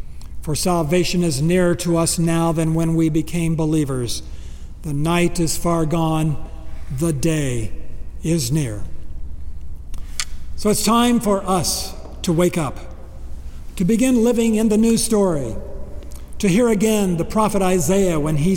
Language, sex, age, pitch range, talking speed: English, male, 60-79, 115-185 Hz, 140 wpm